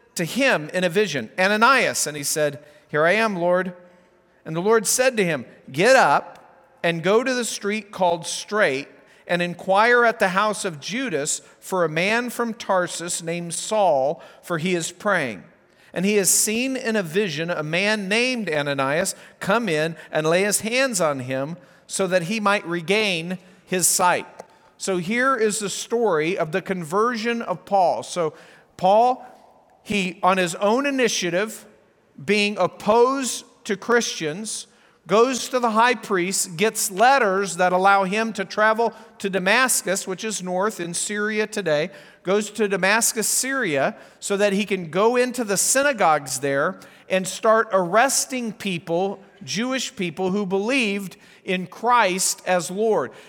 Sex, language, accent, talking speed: male, English, American, 155 wpm